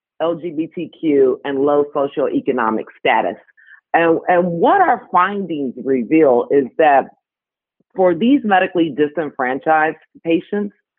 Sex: female